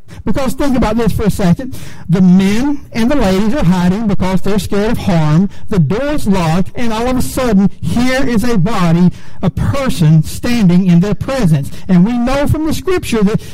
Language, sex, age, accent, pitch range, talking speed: English, male, 60-79, American, 175-245 Hz, 200 wpm